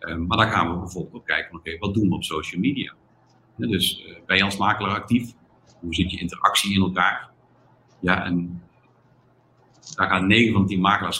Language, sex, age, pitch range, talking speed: Dutch, male, 50-69, 100-130 Hz, 205 wpm